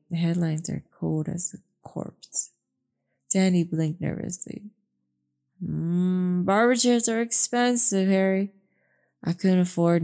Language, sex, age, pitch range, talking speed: English, female, 20-39, 150-200 Hz, 115 wpm